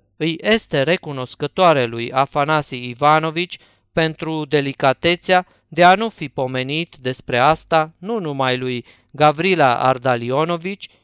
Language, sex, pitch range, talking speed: Romanian, male, 130-175 Hz, 110 wpm